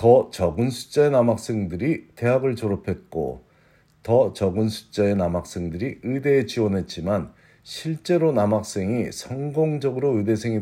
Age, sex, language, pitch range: 50-69, male, Korean, 95-130 Hz